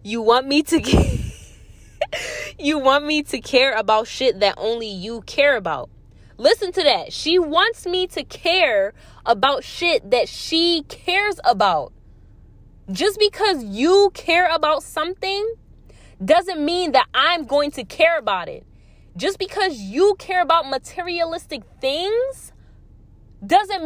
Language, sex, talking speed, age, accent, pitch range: English, female, 135 wpm, 20-39, American, 255-355 Hz